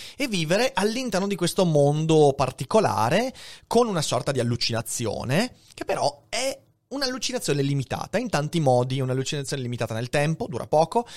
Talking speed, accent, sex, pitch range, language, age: 135 wpm, native, male, 120-175 Hz, Italian, 30-49